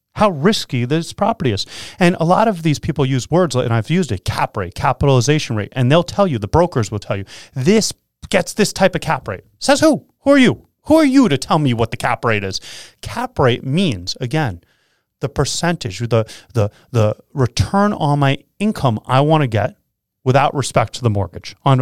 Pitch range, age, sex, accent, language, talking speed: 115-170 Hz, 30-49, male, American, English, 205 wpm